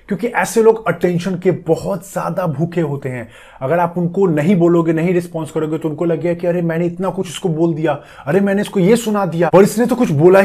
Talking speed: 235 wpm